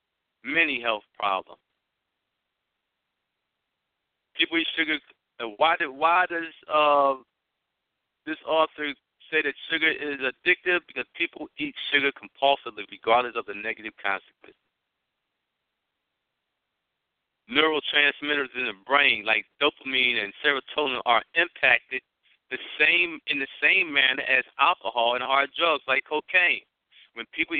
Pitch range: 130-160 Hz